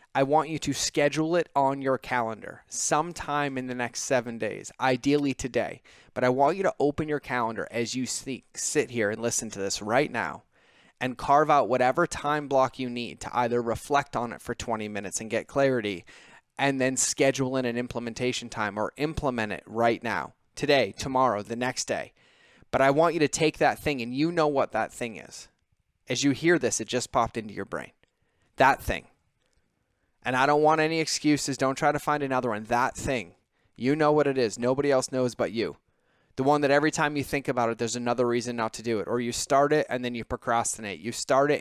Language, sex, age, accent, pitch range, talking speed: English, male, 20-39, American, 120-145 Hz, 215 wpm